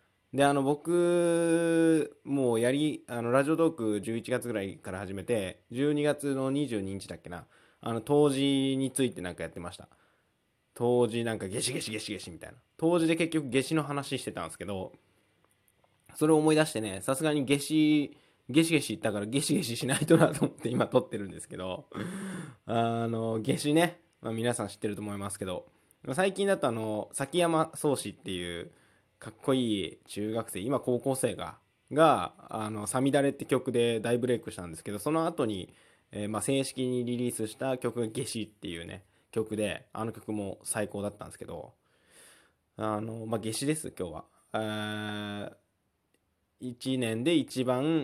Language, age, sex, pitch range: Japanese, 20-39, male, 105-145 Hz